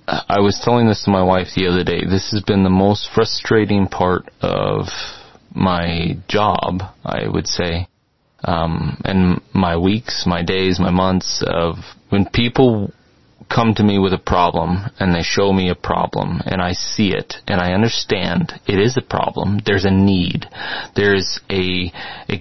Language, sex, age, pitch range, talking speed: English, male, 30-49, 95-110 Hz, 170 wpm